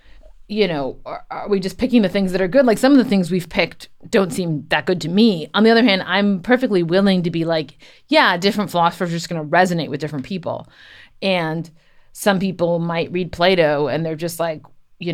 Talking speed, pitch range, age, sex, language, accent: 225 wpm, 170-210 Hz, 30-49, female, English, American